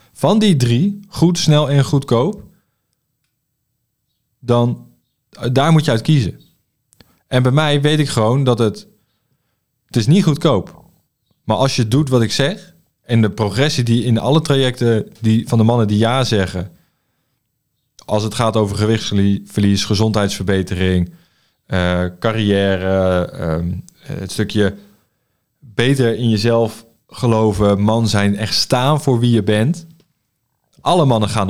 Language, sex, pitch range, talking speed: Dutch, male, 100-135 Hz, 135 wpm